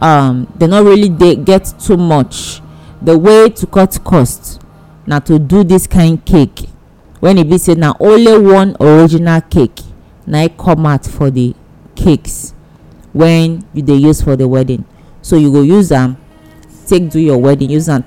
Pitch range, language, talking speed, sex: 130-180 Hz, English, 175 wpm, female